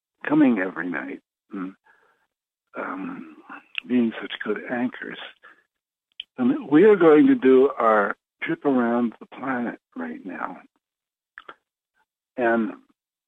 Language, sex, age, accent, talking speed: English, male, 60-79, American, 100 wpm